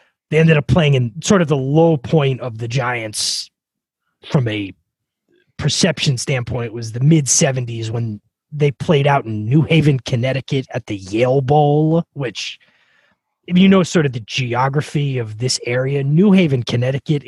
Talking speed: 165 wpm